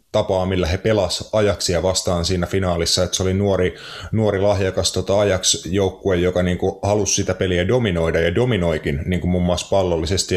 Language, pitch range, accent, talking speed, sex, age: Finnish, 90-105 Hz, native, 175 wpm, male, 30-49